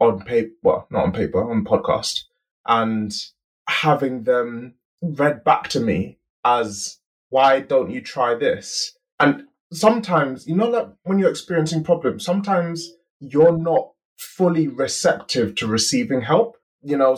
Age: 20-39